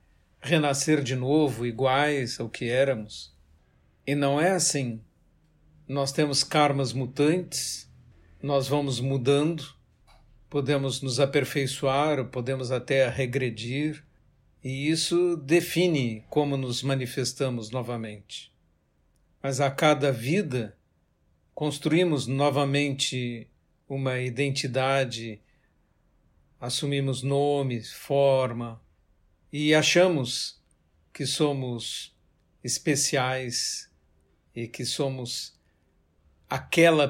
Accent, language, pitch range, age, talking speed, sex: Brazilian, Portuguese, 115-145 Hz, 60-79, 80 wpm, male